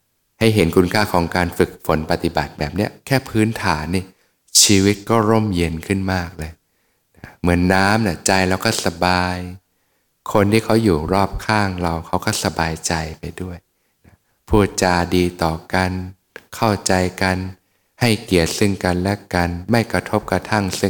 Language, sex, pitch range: Thai, male, 90-105 Hz